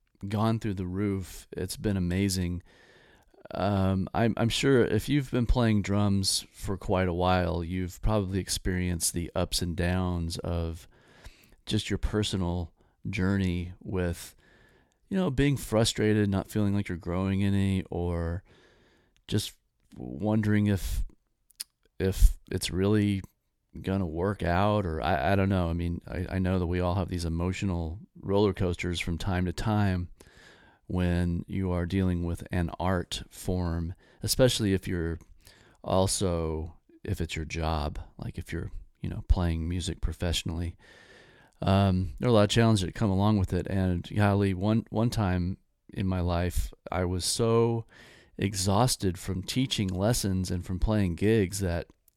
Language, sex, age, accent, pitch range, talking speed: English, male, 40-59, American, 85-100 Hz, 150 wpm